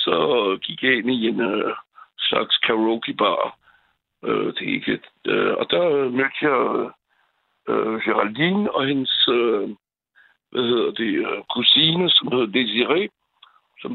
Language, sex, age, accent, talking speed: Danish, male, 60-79, French, 85 wpm